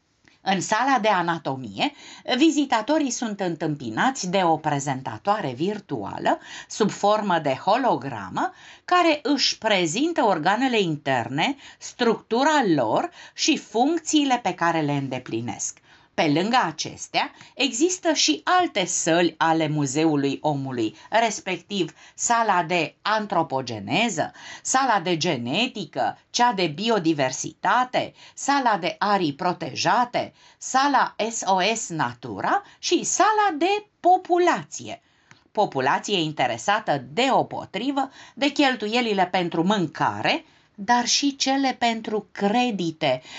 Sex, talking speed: female, 100 wpm